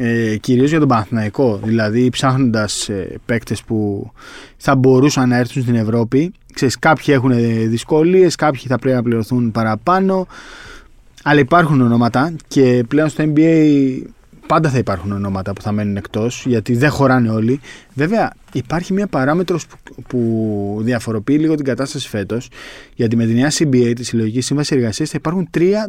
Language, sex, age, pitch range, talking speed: Greek, male, 20-39, 115-150 Hz, 155 wpm